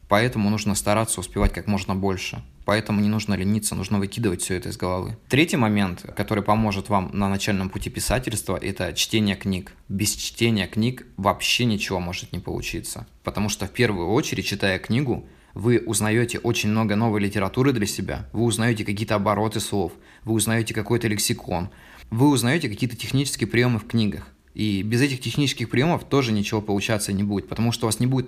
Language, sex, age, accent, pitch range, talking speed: Russian, male, 20-39, native, 100-115 Hz, 180 wpm